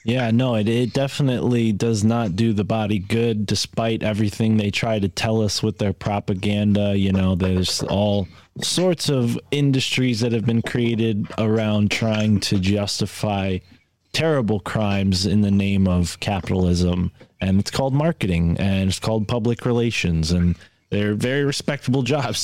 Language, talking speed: English, 150 wpm